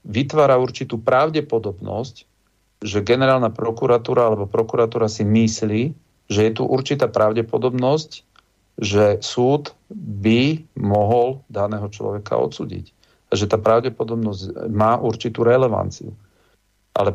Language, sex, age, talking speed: Slovak, male, 40-59, 105 wpm